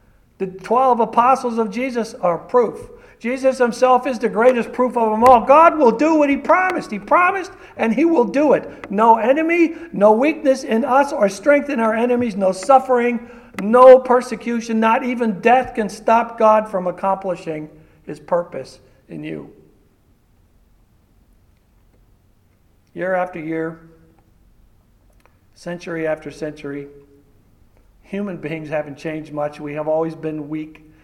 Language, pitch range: English, 145-220 Hz